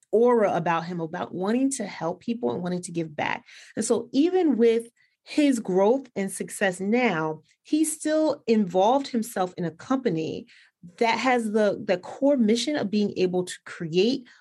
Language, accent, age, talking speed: English, American, 30-49, 165 wpm